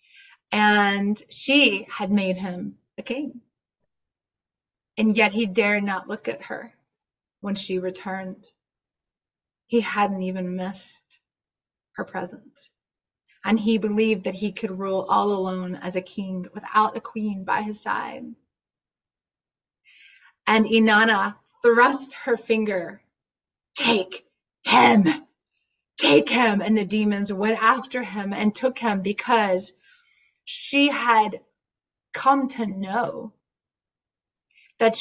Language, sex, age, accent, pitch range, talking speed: English, female, 20-39, American, 190-230 Hz, 115 wpm